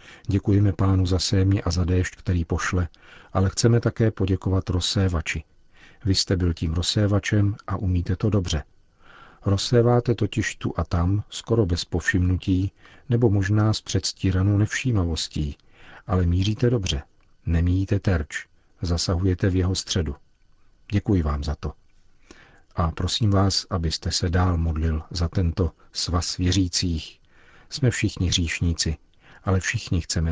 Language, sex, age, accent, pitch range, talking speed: Czech, male, 50-69, native, 90-105 Hz, 130 wpm